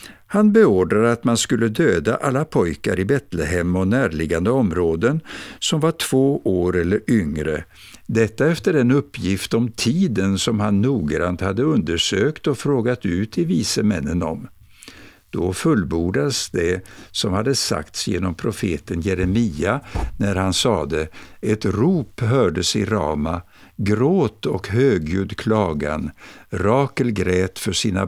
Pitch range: 95-120 Hz